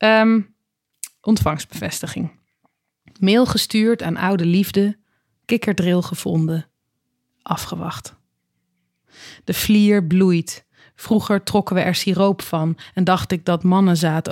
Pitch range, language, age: 170-195 Hz, Dutch, 20-39